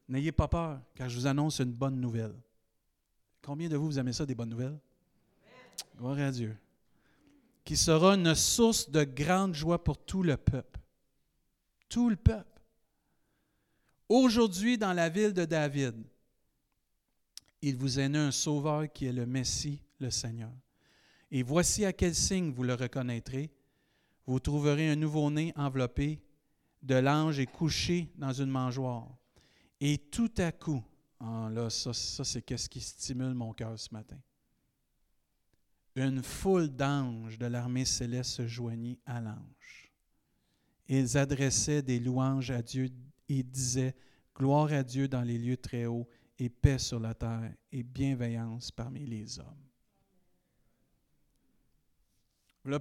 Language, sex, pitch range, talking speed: French, male, 125-150 Hz, 145 wpm